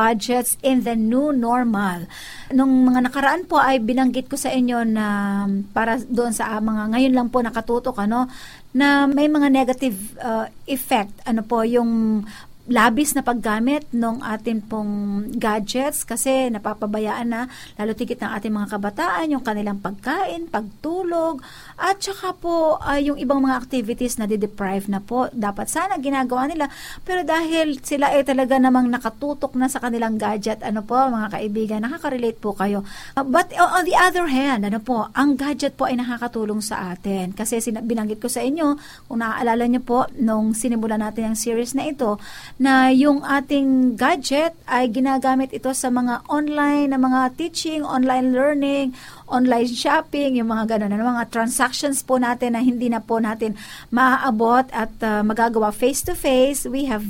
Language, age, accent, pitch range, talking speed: Filipino, 50-69, native, 220-275 Hz, 165 wpm